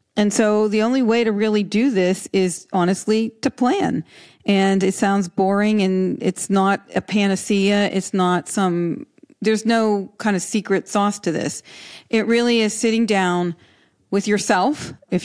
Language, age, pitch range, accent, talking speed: English, 40-59, 170-210 Hz, American, 160 wpm